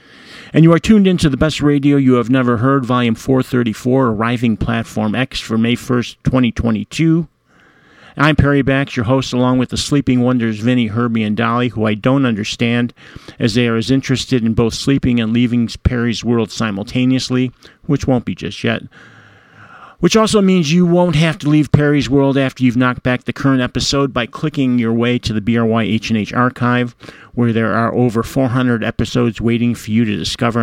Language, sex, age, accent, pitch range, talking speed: English, male, 50-69, American, 115-135 Hz, 180 wpm